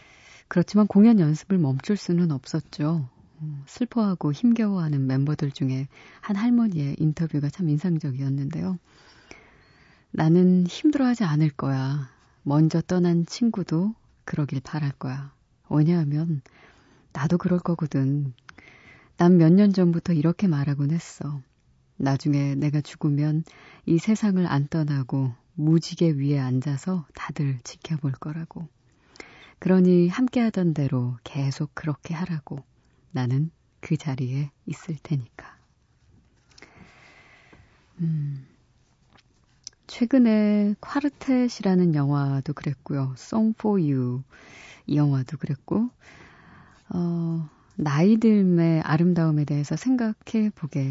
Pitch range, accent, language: 140-180 Hz, native, Korean